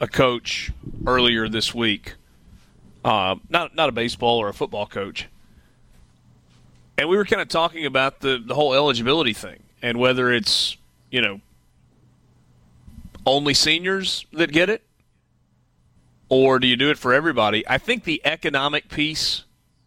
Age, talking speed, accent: 30-49, 145 wpm, American